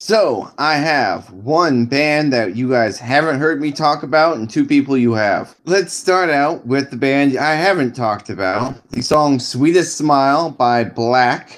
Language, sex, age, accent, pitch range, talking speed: English, male, 20-39, American, 115-150 Hz, 175 wpm